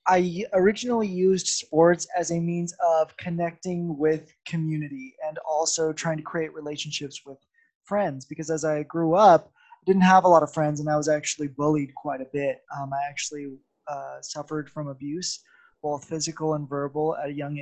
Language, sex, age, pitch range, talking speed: English, male, 20-39, 150-170 Hz, 180 wpm